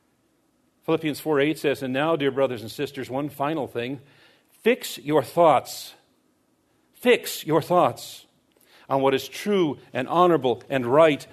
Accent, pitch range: American, 130-170 Hz